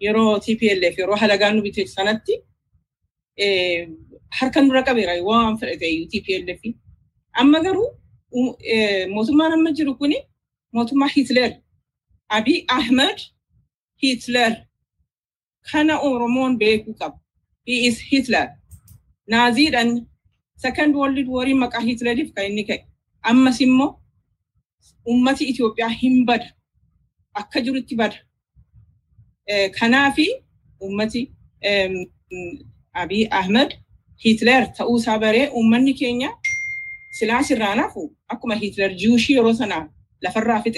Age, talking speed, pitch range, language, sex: 40-59, 95 wpm, 200-270 Hz, Swedish, female